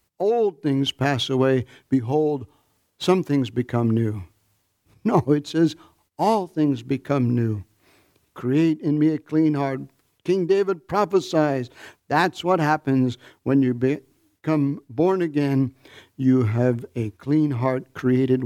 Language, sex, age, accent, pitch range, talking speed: English, male, 60-79, American, 110-170 Hz, 125 wpm